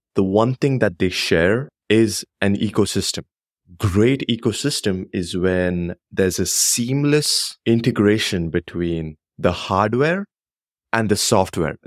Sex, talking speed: male, 115 wpm